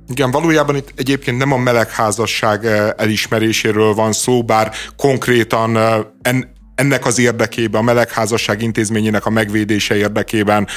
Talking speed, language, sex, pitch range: 115 wpm, Hungarian, male, 105-135 Hz